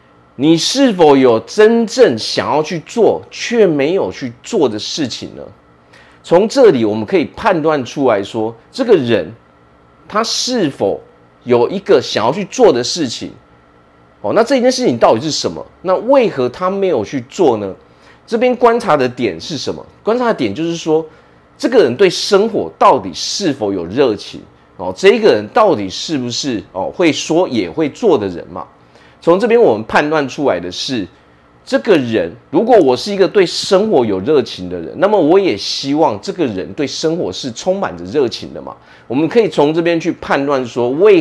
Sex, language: male, Chinese